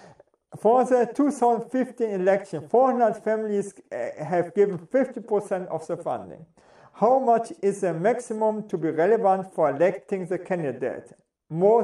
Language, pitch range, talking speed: English, 175-240 Hz, 130 wpm